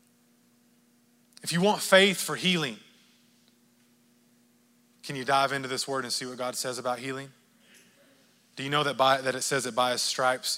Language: English